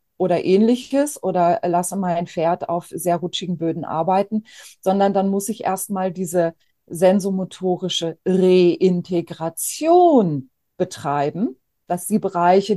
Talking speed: 110 wpm